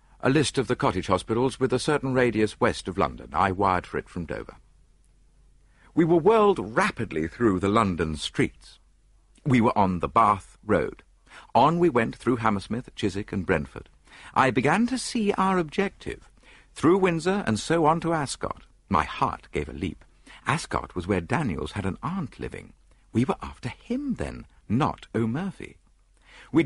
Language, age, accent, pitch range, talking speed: English, 50-69, British, 85-135 Hz, 170 wpm